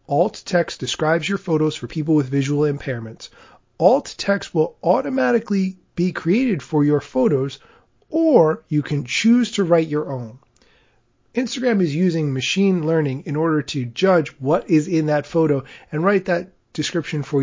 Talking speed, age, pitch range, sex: 160 wpm, 30-49, 145-180 Hz, male